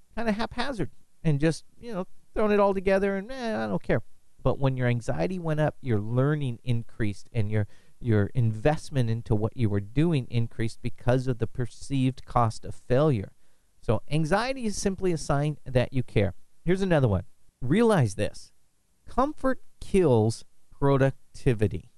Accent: American